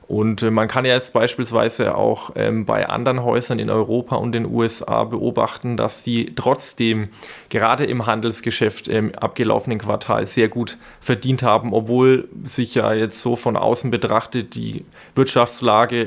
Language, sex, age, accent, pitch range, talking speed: German, male, 20-39, German, 115-130 Hz, 150 wpm